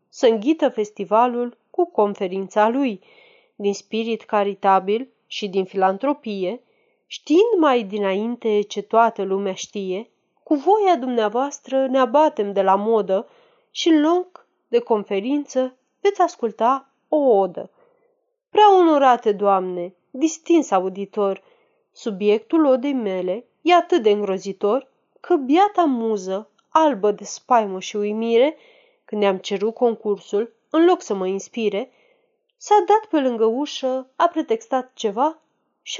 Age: 30-49